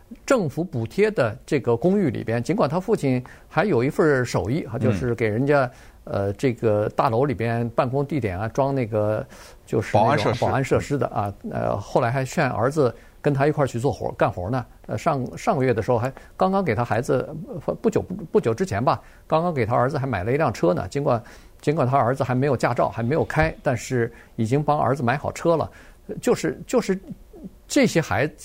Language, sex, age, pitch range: Chinese, male, 50-69, 120-180 Hz